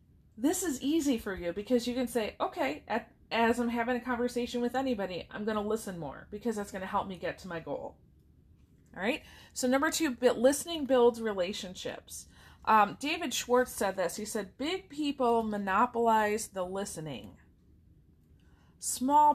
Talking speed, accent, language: 165 wpm, American, English